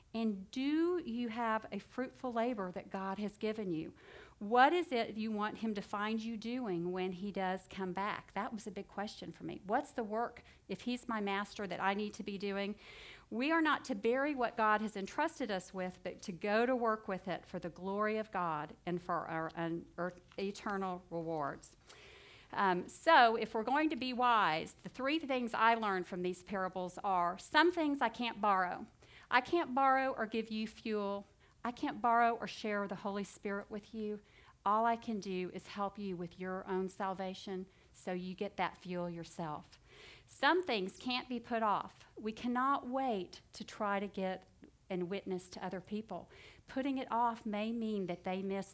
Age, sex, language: 50-69, female, English